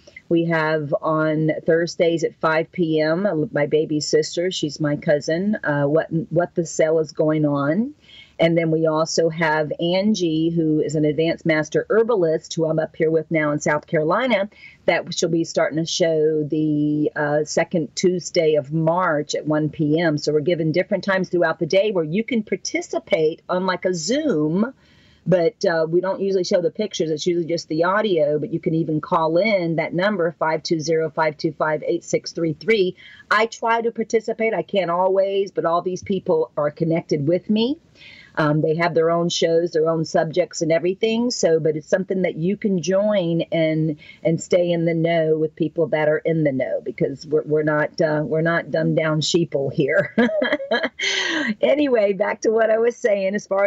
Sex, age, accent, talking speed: female, 40-59, American, 190 wpm